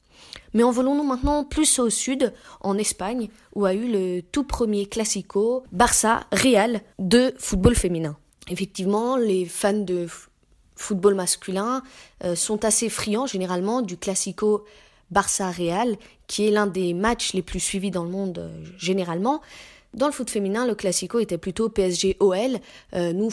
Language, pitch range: French, 185-235 Hz